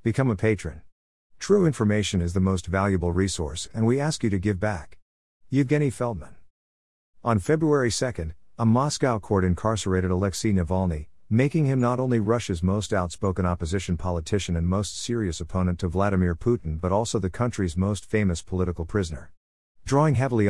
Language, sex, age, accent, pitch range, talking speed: English, male, 50-69, American, 90-115 Hz, 160 wpm